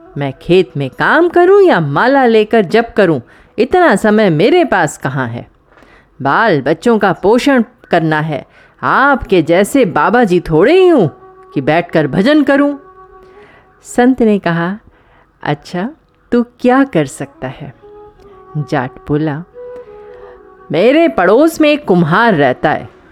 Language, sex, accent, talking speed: Hindi, female, native, 130 wpm